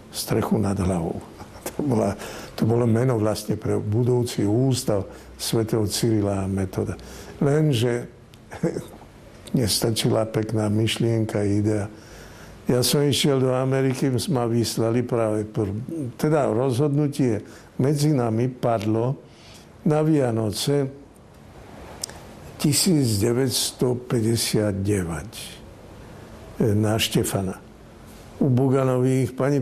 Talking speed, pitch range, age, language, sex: 85 wpm, 105-125 Hz, 60-79, Slovak, male